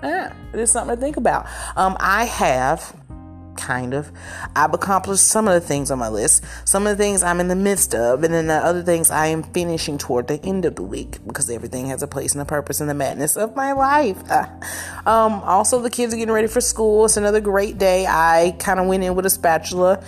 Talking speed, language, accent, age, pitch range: 240 wpm, English, American, 30-49, 135-190 Hz